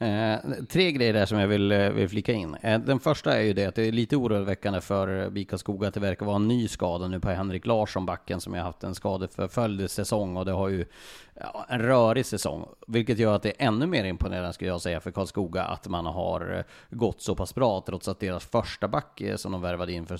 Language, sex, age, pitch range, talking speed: Swedish, male, 30-49, 90-105 Hz, 240 wpm